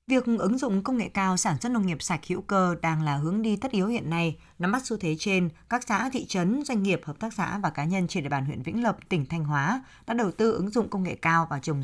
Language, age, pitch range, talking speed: Vietnamese, 20-39, 160-225 Hz, 290 wpm